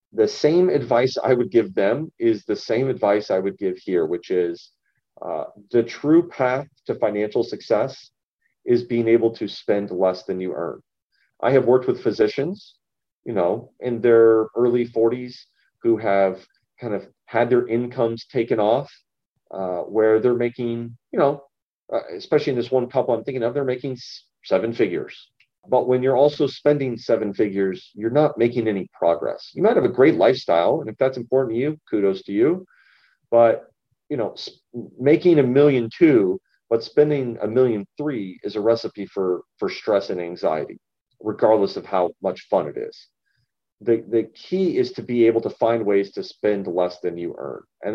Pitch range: 110-145 Hz